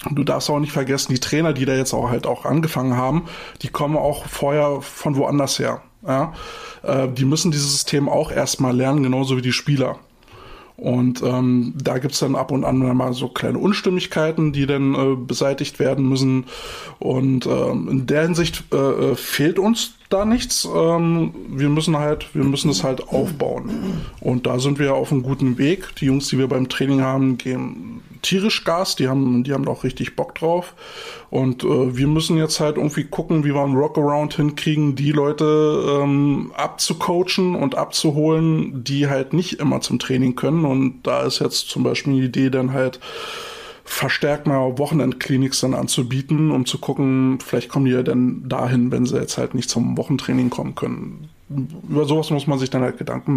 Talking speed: 185 wpm